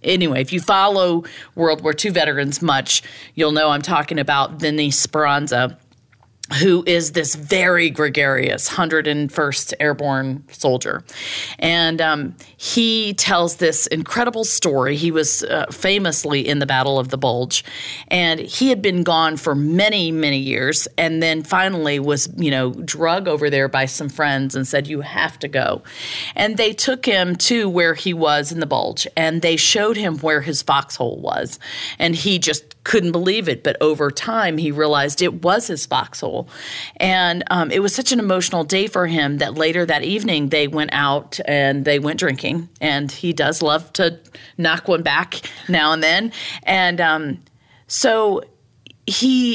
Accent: American